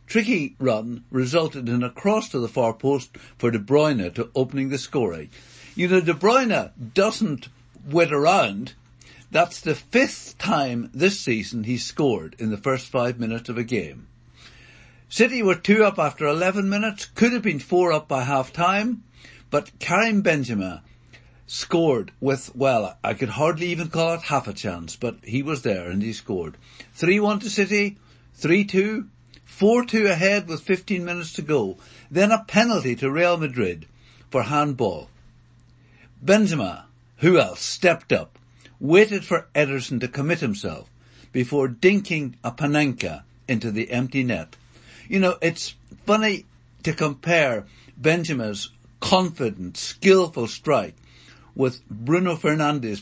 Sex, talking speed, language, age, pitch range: male, 145 wpm, English, 60-79, 120-175 Hz